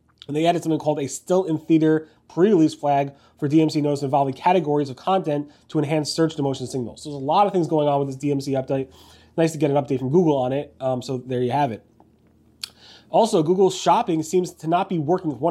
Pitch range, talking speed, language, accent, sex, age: 135-160 Hz, 215 wpm, English, American, male, 30-49